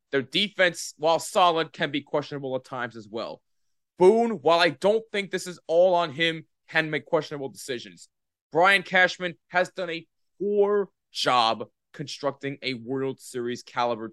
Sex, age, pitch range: male, 20-39, 140-200 Hz